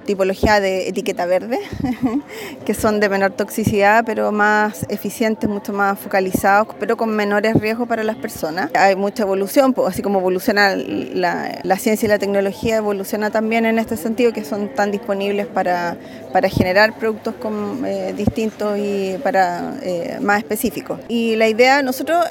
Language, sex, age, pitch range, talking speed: Spanish, female, 20-39, 205-245 Hz, 155 wpm